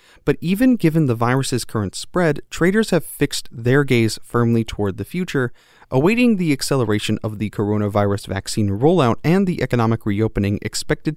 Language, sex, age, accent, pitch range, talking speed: English, male, 30-49, American, 105-135 Hz, 155 wpm